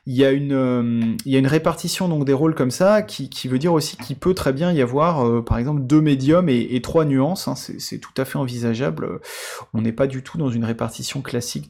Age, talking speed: 20-39, 260 wpm